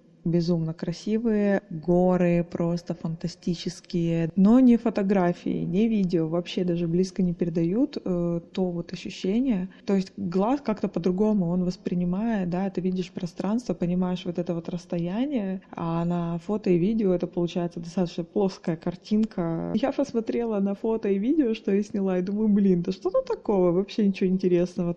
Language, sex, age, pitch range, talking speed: Russian, female, 20-39, 175-225 Hz, 150 wpm